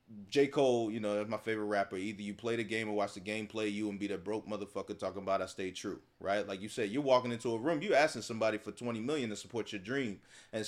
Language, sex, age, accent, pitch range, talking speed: English, male, 30-49, American, 115-140 Hz, 275 wpm